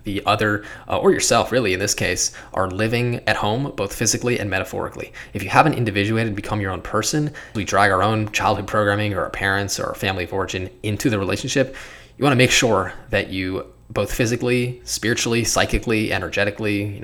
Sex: male